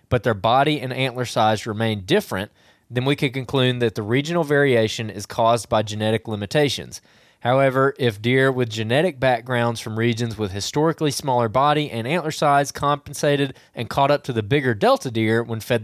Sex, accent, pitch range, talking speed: male, American, 110-135 Hz, 180 wpm